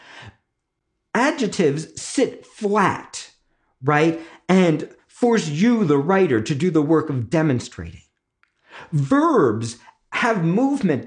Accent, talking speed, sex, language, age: American, 100 wpm, male, English, 50-69